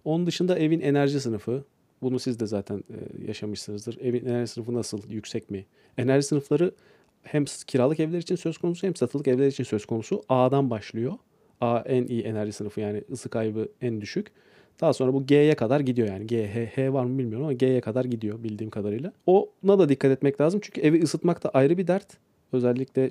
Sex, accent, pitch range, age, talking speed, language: male, native, 115-150 Hz, 40-59, 190 wpm, Turkish